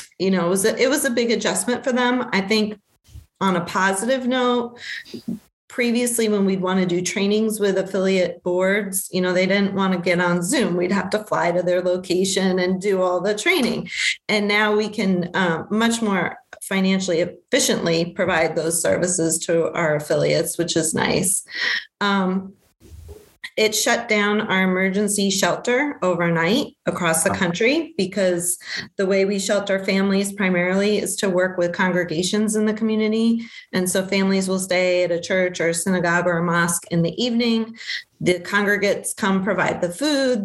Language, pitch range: English, 175-215 Hz